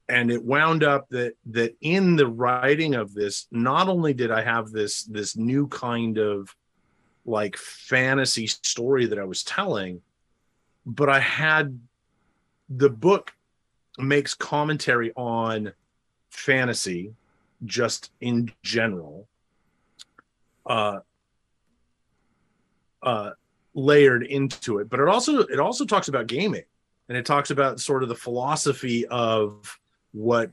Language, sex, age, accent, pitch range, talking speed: English, male, 30-49, American, 115-140 Hz, 125 wpm